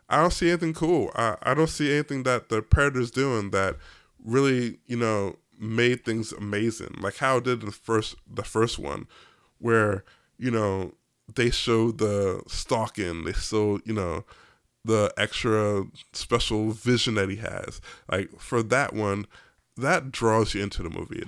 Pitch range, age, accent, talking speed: 105-135 Hz, 20-39, American, 165 wpm